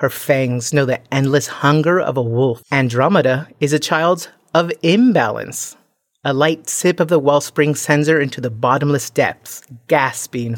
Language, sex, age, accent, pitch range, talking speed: English, female, 30-49, American, 130-165 Hz, 160 wpm